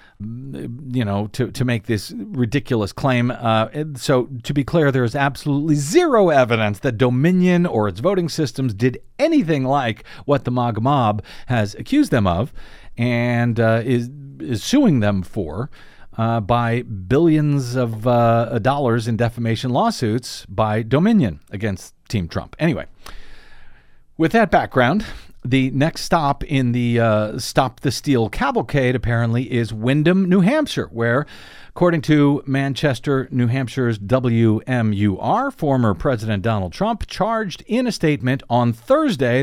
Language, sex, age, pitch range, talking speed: English, male, 50-69, 115-150 Hz, 140 wpm